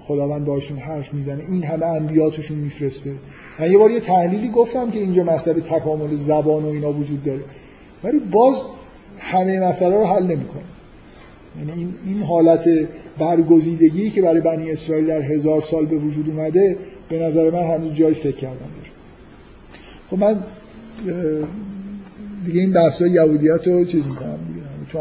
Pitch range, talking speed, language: 150-175 Hz, 145 wpm, Persian